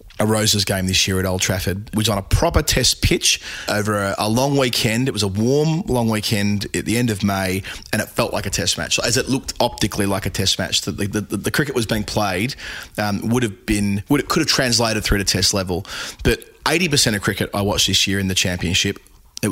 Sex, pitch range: male, 100-115 Hz